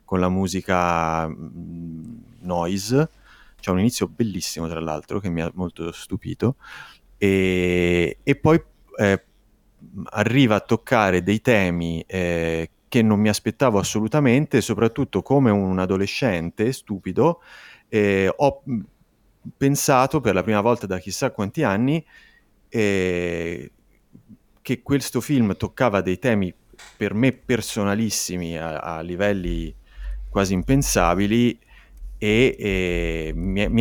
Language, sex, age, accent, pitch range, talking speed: Italian, male, 30-49, native, 85-110 Hz, 115 wpm